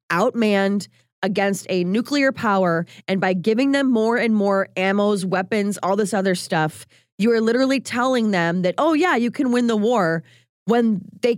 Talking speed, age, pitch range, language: 175 wpm, 20-39, 170-240 Hz, English